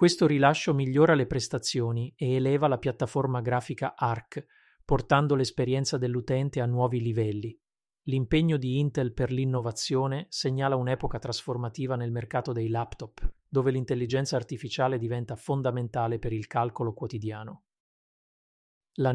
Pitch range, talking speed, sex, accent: 120-140 Hz, 120 wpm, male, native